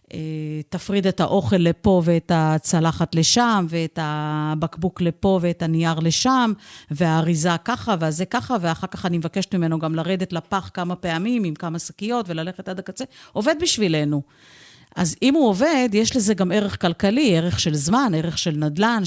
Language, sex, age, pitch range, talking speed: Hebrew, female, 50-69, 170-215 Hz, 155 wpm